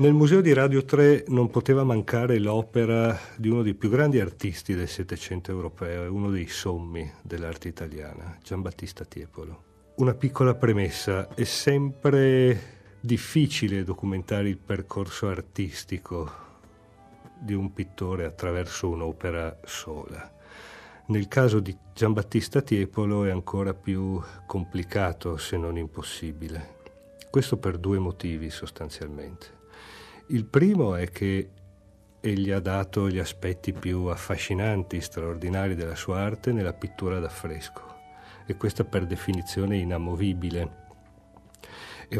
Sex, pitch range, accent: male, 85-105 Hz, native